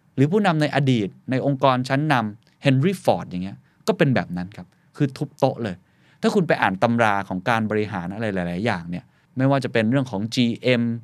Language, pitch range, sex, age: Thai, 110-155 Hz, male, 20-39